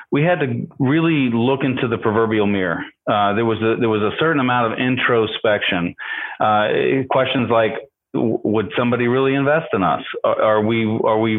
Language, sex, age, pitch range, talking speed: English, male, 40-59, 110-140 Hz, 175 wpm